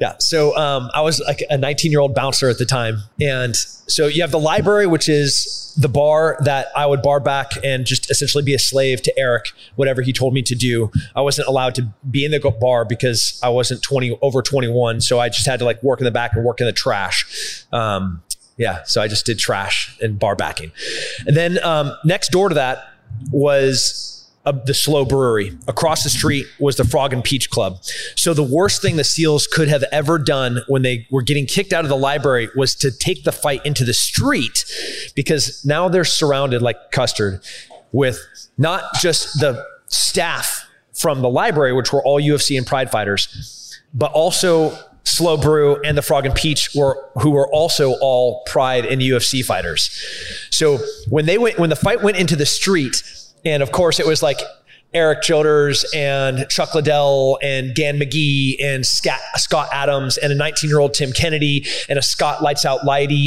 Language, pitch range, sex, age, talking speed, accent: English, 130-150 Hz, male, 20-39, 200 wpm, American